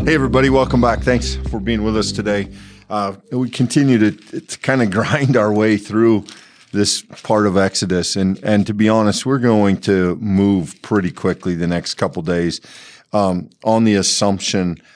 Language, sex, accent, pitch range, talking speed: English, male, American, 90-110 Hz, 175 wpm